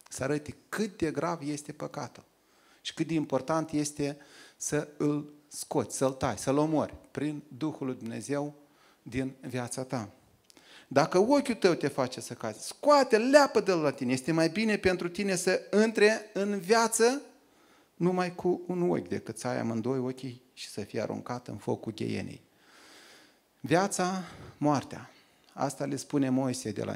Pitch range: 125-160 Hz